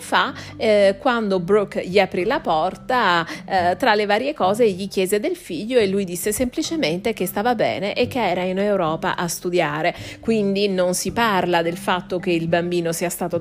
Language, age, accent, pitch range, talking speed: Italian, 40-59, native, 180-240 Hz, 190 wpm